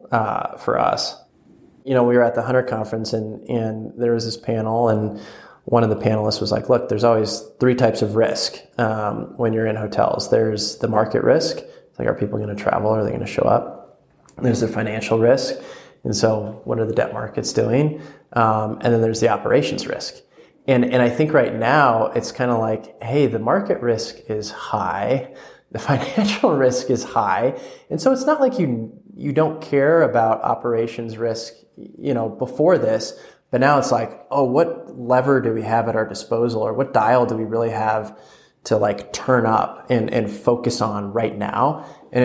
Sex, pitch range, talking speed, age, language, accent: male, 110-125 Hz, 200 wpm, 20-39, English, American